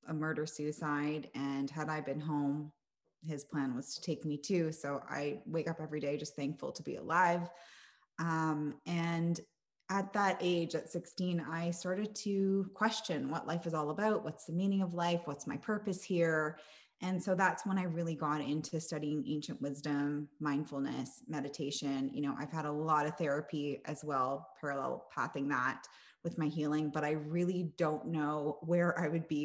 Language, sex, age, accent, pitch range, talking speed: English, female, 20-39, American, 150-175 Hz, 180 wpm